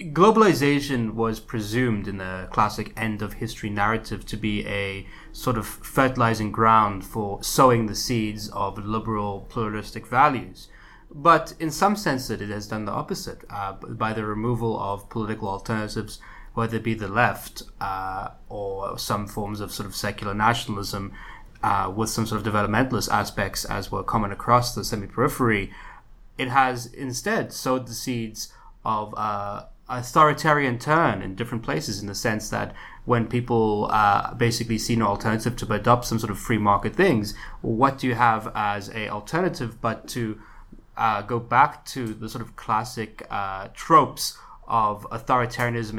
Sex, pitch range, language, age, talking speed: male, 105-120 Hz, English, 20-39, 155 wpm